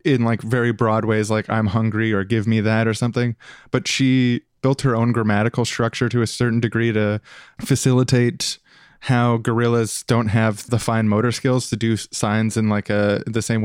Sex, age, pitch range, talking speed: male, 20-39, 110-125 Hz, 190 wpm